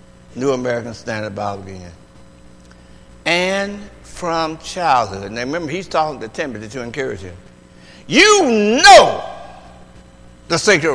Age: 60-79